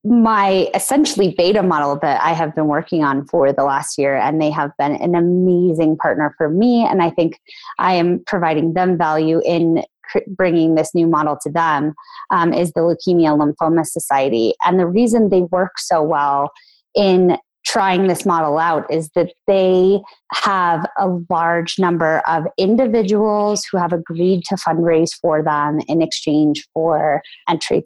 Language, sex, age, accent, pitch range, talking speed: English, female, 20-39, American, 155-190 Hz, 165 wpm